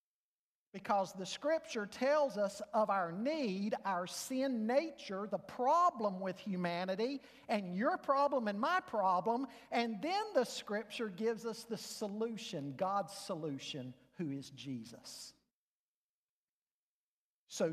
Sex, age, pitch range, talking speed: male, 50-69, 210-280 Hz, 120 wpm